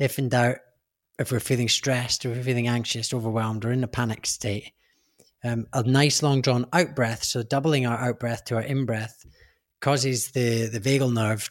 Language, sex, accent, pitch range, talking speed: English, male, British, 115-135 Hz, 205 wpm